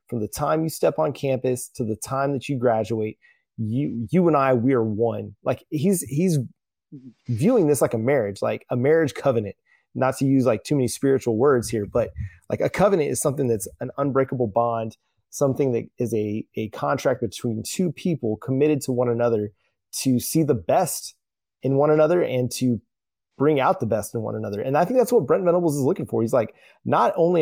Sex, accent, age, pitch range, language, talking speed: male, American, 20-39, 120-150 Hz, English, 205 wpm